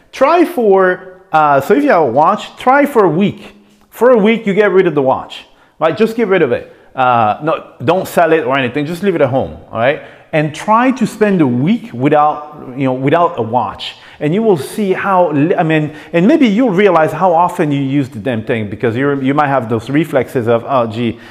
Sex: male